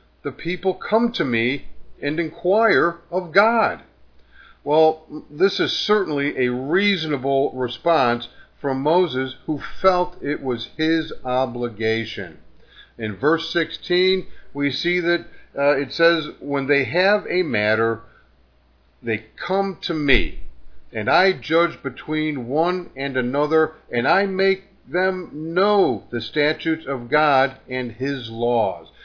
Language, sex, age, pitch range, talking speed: English, male, 50-69, 130-180 Hz, 125 wpm